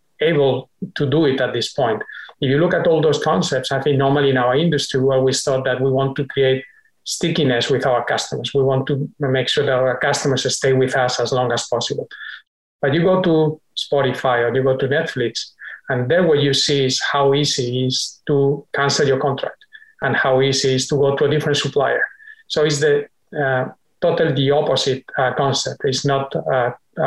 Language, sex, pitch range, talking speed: English, male, 130-150 Hz, 210 wpm